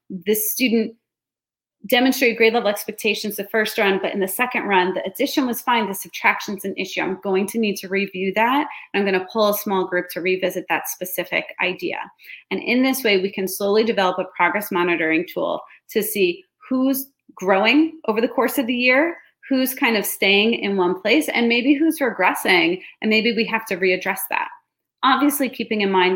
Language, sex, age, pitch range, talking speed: English, female, 30-49, 185-240 Hz, 195 wpm